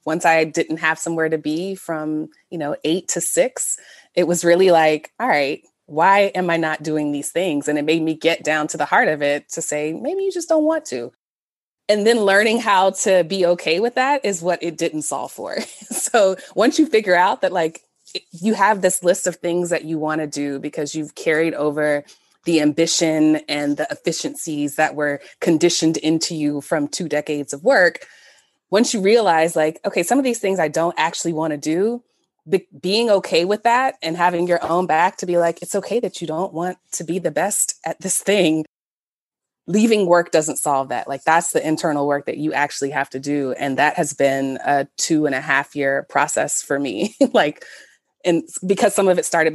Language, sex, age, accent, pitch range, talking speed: English, female, 20-39, American, 150-185 Hz, 210 wpm